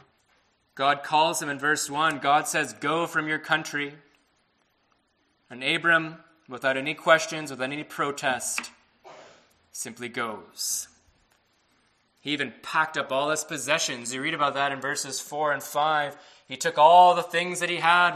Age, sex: 20-39, male